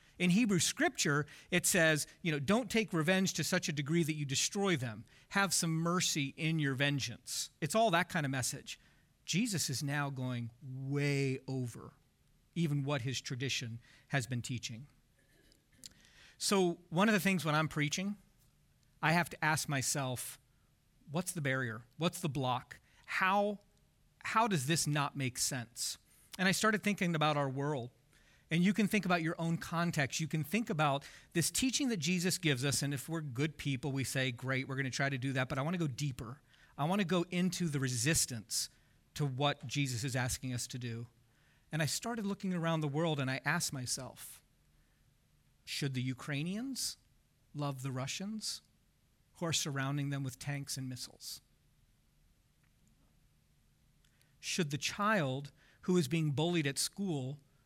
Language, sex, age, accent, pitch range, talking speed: English, male, 40-59, American, 135-175 Hz, 170 wpm